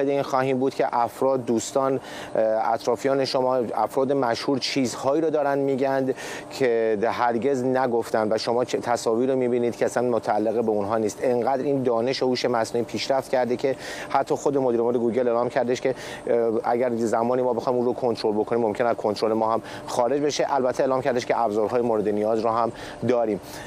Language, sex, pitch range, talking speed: Persian, male, 115-135 Hz, 175 wpm